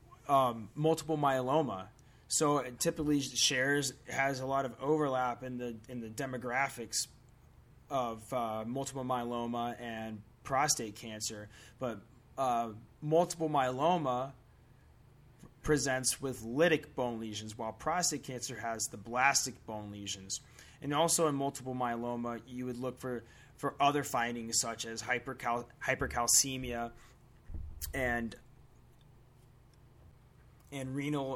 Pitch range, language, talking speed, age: 115-130 Hz, English, 115 wpm, 20-39